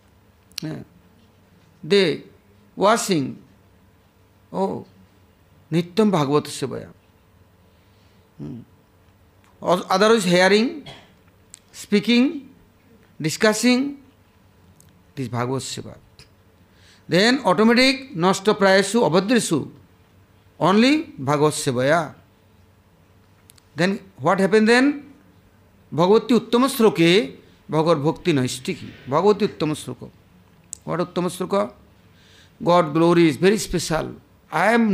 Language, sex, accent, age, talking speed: English, male, Indian, 60-79, 80 wpm